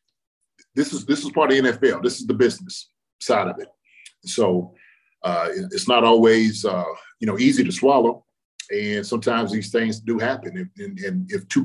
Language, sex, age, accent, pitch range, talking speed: English, male, 30-49, American, 110-185 Hz, 190 wpm